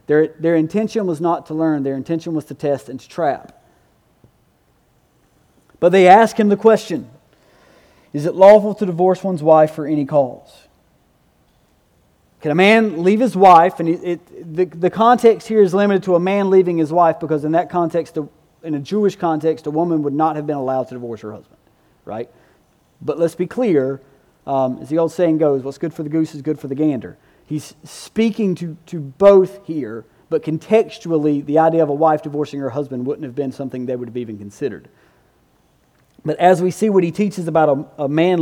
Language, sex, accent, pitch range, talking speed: English, male, American, 140-180 Hz, 200 wpm